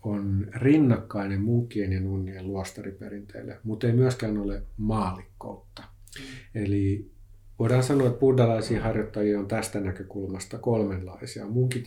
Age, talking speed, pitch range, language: 50-69, 110 wpm, 95-110 Hz, Finnish